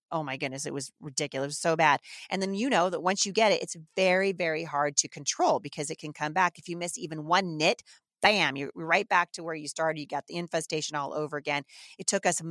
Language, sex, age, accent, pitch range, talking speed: English, female, 30-49, American, 150-190 Hz, 250 wpm